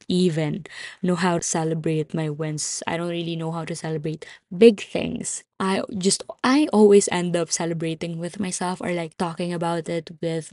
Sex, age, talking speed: female, 20-39, 175 wpm